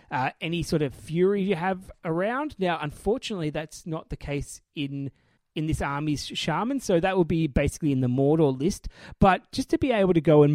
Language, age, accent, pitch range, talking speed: English, 30-49, Australian, 145-190 Hz, 205 wpm